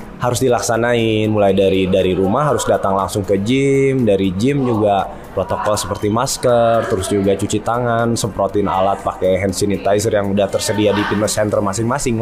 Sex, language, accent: male, Indonesian, native